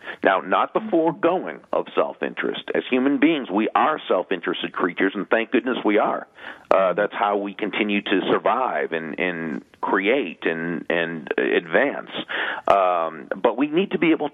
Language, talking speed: English, 160 wpm